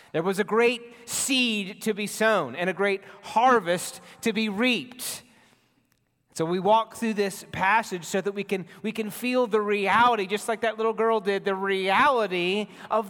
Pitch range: 175-225 Hz